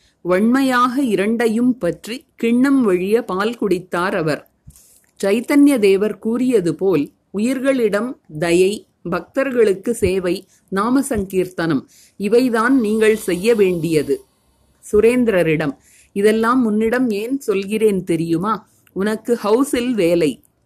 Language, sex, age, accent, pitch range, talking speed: Tamil, female, 30-49, native, 180-235 Hz, 85 wpm